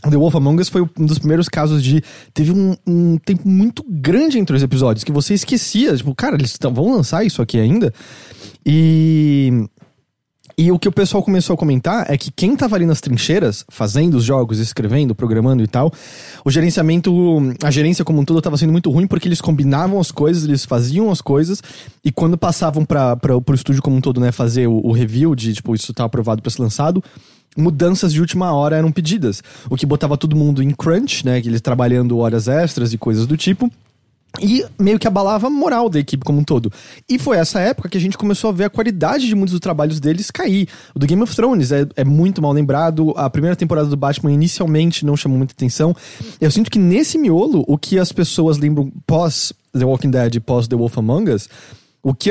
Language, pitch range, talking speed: English, 135-180 Hz, 215 wpm